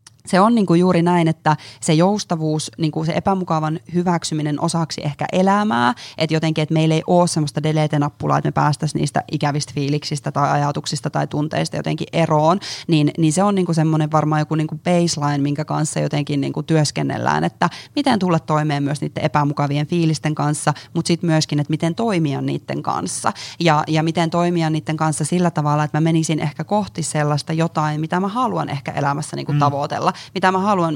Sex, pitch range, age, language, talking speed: female, 150-170 Hz, 20-39, Finnish, 180 wpm